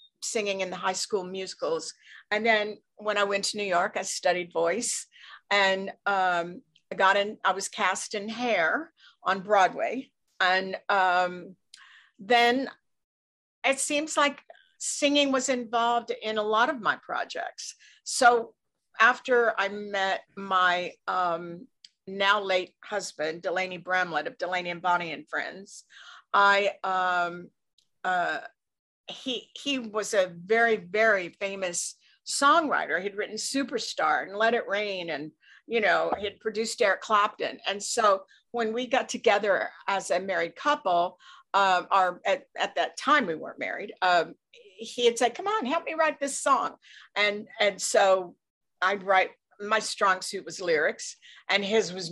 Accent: American